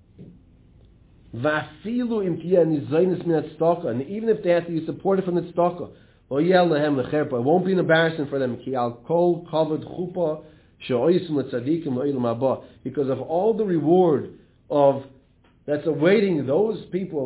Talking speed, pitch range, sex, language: 95 wpm, 135-180 Hz, male, English